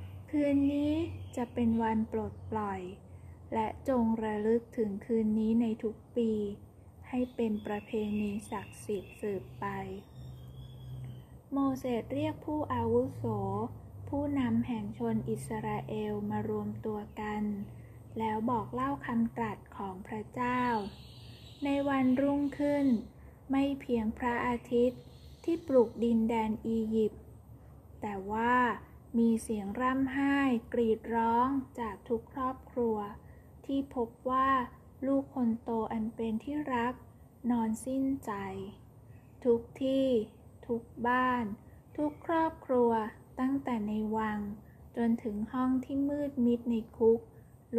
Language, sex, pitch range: Thai, female, 210-260 Hz